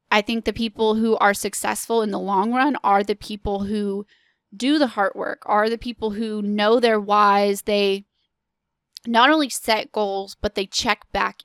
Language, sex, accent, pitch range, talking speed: English, female, American, 210-265 Hz, 185 wpm